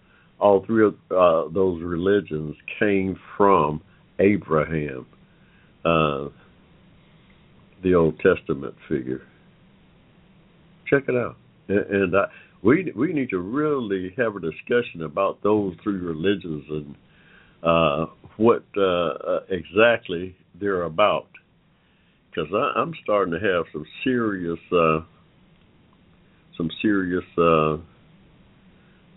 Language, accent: English, American